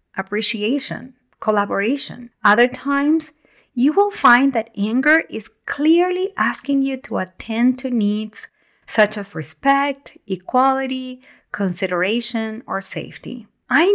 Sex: female